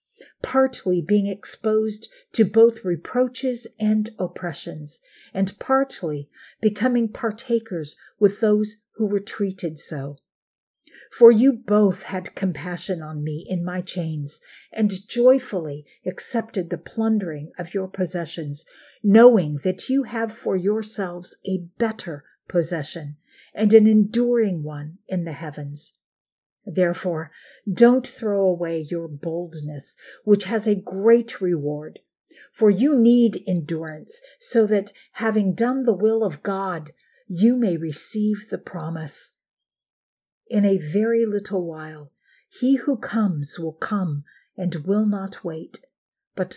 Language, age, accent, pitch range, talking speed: English, 50-69, American, 170-225 Hz, 120 wpm